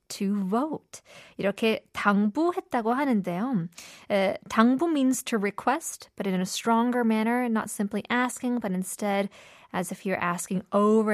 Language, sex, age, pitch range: Korean, female, 20-39, 195-245 Hz